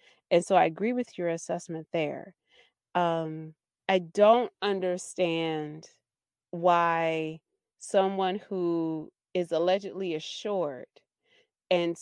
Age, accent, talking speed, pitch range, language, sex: 30-49, American, 95 wpm, 165-195 Hz, English, female